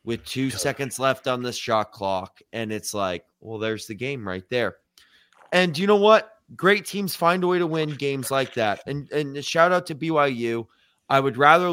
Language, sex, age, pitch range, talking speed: English, male, 20-39, 120-160 Hz, 205 wpm